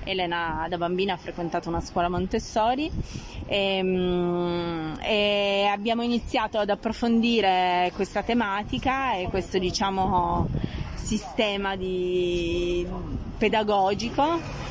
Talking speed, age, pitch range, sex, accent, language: 85 wpm, 20-39, 180-210 Hz, female, native, Italian